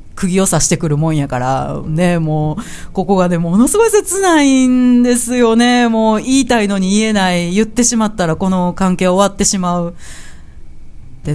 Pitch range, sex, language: 150-225 Hz, female, Japanese